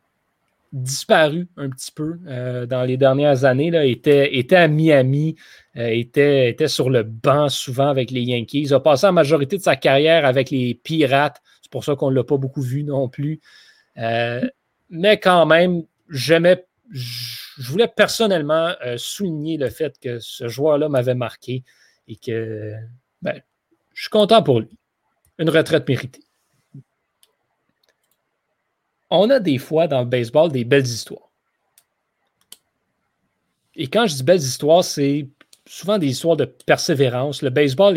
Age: 30-49